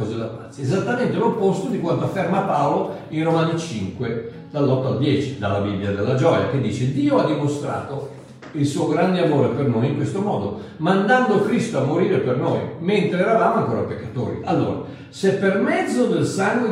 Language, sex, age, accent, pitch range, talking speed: Italian, male, 60-79, native, 140-215 Hz, 165 wpm